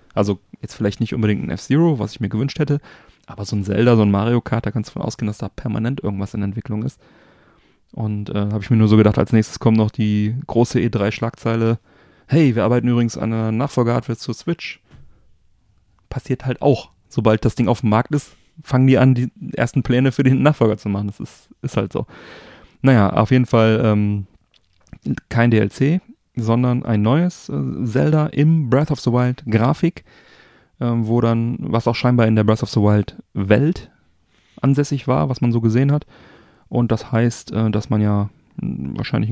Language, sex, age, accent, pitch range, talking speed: German, male, 30-49, German, 110-130 Hz, 190 wpm